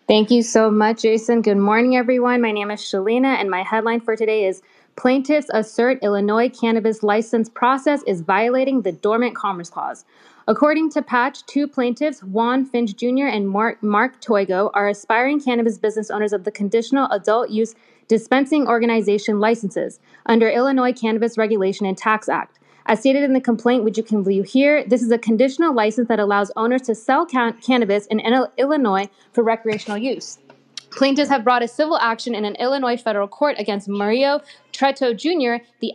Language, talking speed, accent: English, 175 wpm, American